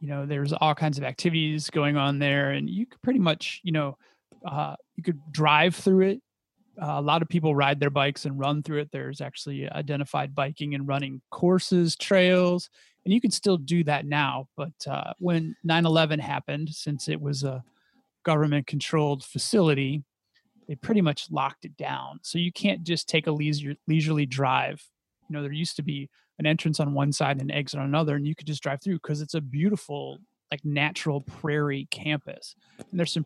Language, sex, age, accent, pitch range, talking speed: English, male, 30-49, American, 140-165 Hz, 195 wpm